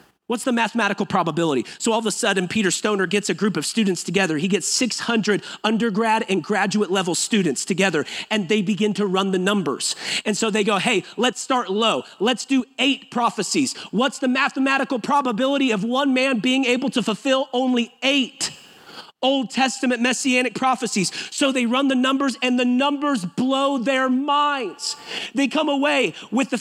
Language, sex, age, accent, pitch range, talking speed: English, male, 40-59, American, 210-265 Hz, 175 wpm